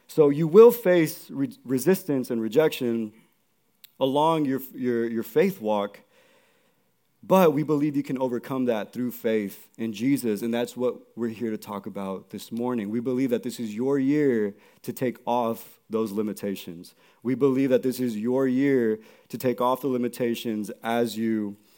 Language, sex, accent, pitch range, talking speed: English, male, American, 115-145 Hz, 165 wpm